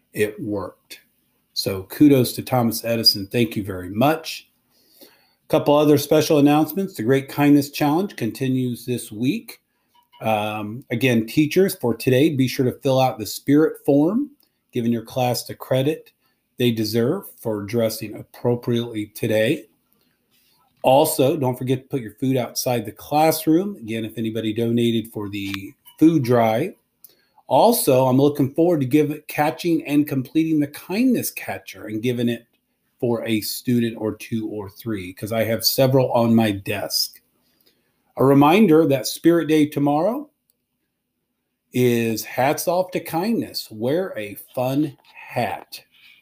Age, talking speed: 40-59, 140 wpm